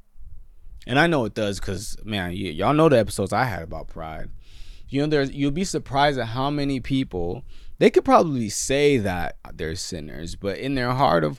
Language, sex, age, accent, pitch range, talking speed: English, male, 20-39, American, 85-130 Hz, 195 wpm